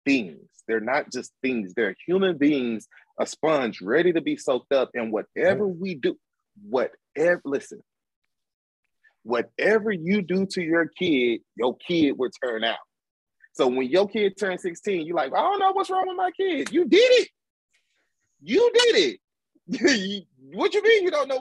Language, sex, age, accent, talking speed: English, male, 30-49, American, 170 wpm